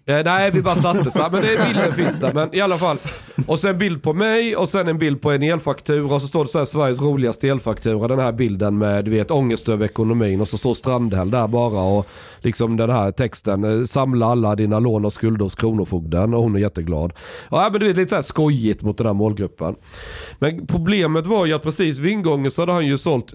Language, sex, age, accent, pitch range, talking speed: Swedish, male, 40-59, native, 110-150 Hz, 240 wpm